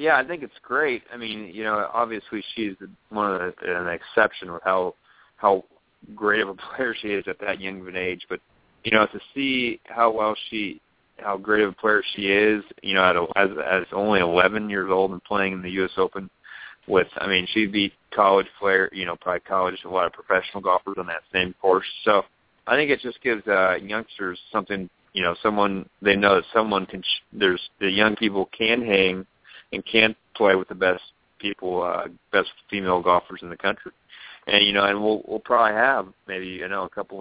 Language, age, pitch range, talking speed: English, 30-49, 95-105 Hz, 210 wpm